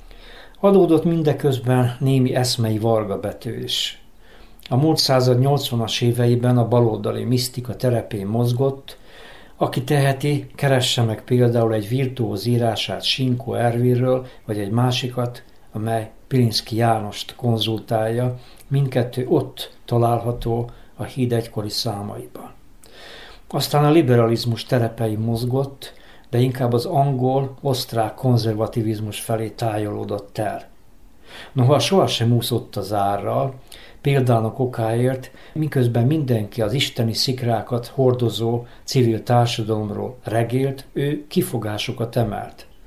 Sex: male